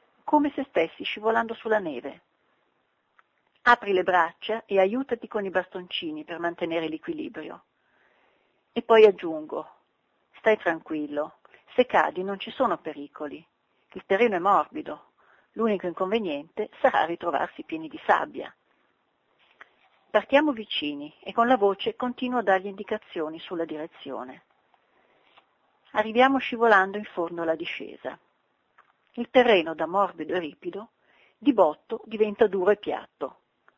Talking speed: 125 wpm